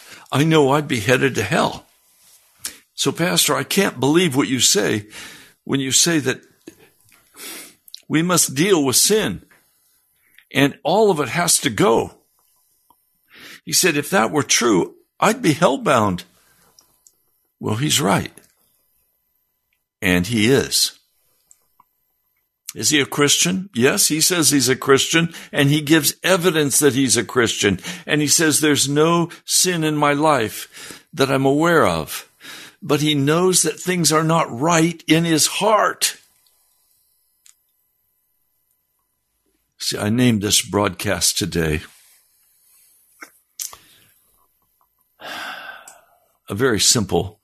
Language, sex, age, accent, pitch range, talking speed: English, male, 60-79, American, 130-165 Hz, 125 wpm